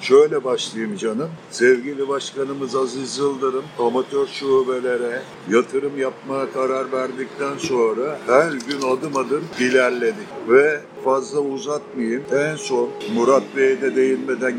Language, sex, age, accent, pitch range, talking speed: Turkish, male, 60-79, native, 130-165 Hz, 115 wpm